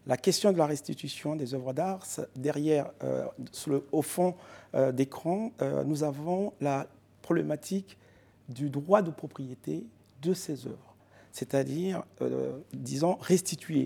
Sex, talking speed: male, 140 wpm